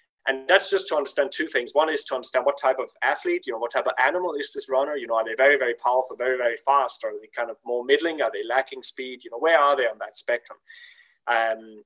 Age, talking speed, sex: 20-39, 270 wpm, male